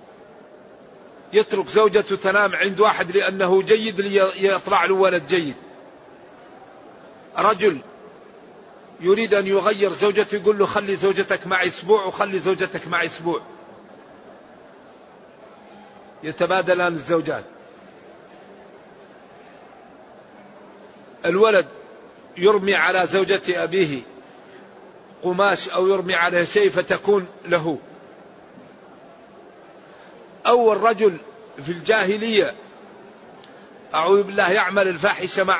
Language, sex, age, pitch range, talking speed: Arabic, male, 50-69, 185-215 Hz, 85 wpm